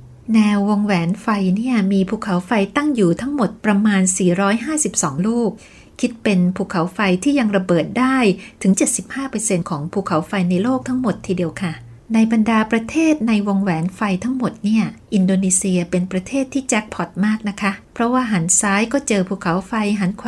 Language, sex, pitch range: Thai, female, 180-225 Hz